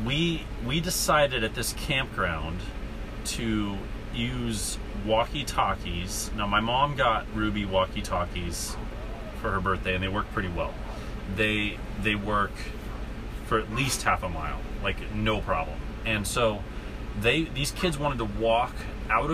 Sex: male